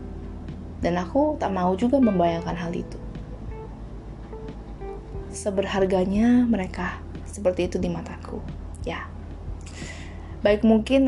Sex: female